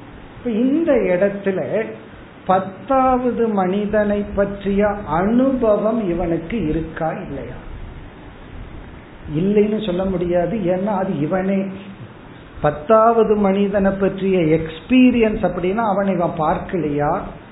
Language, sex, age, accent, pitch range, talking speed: Tamil, male, 50-69, native, 160-215 Hz, 75 wpm